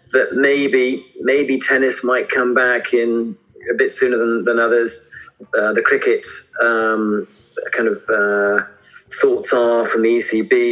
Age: 40-59